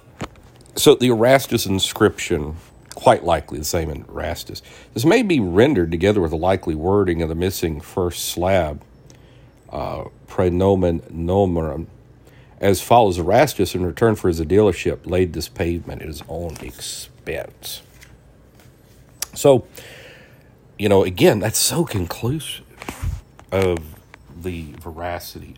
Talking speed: 120 wpm